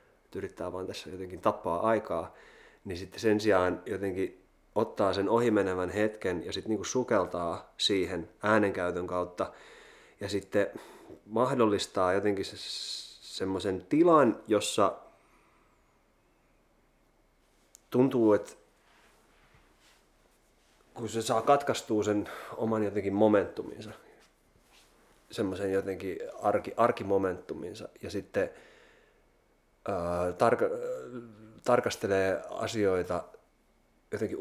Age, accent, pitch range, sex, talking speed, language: 30-49, native, 90-110 Hz, male, 90 wpm, Finnish